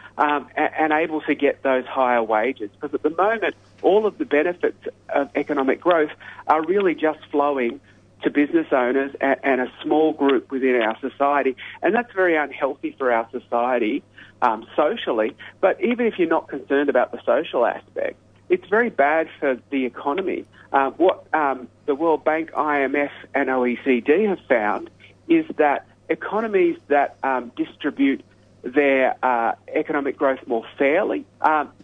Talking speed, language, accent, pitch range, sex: 160 wpm, English, Australian, 125-160 Hz, male